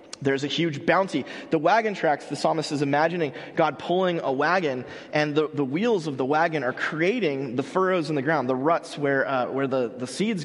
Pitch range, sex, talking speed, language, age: 130-165 Hz, male, 210 wpm, English, 30-49